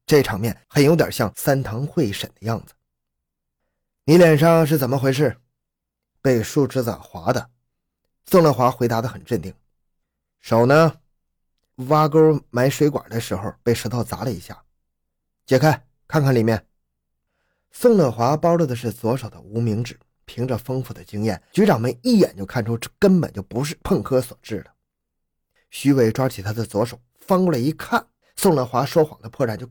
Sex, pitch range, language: male, 100-150 Hz, Chinese